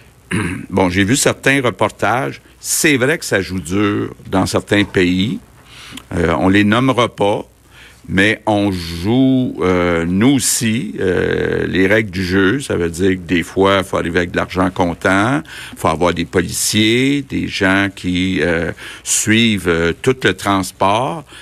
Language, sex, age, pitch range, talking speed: French, male, 50-69, 95-120 Hz, 160 wpm